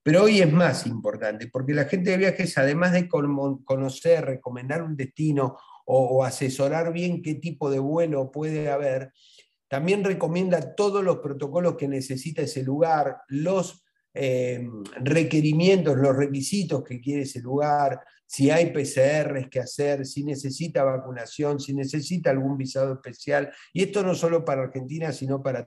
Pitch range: 135-170 Hz